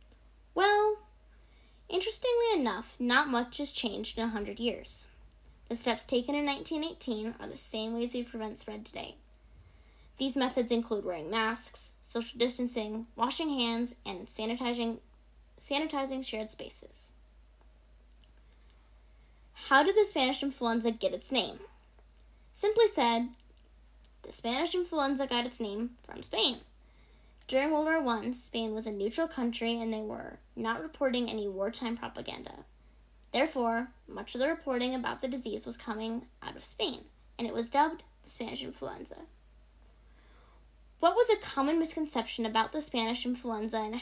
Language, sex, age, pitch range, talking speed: English, female, 10-29, 220-275 Hz, 140 wpm